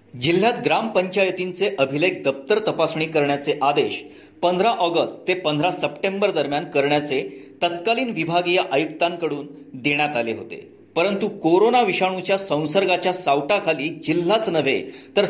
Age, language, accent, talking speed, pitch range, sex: 40-59, Marathi, native, 110 wpm, 150-200 Hz, male